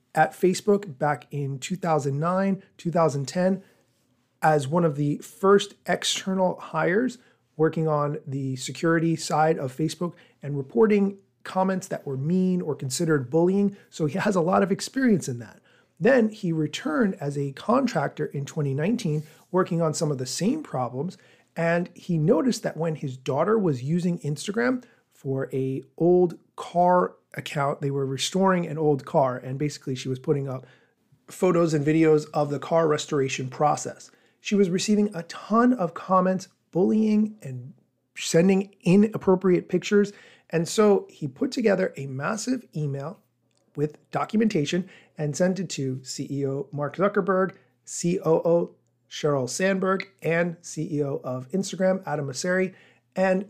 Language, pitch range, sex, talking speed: English, 145-190 Hz, male, 140 wpm